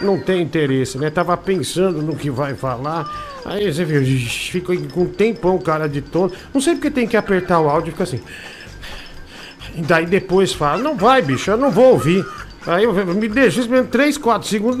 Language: Portuguese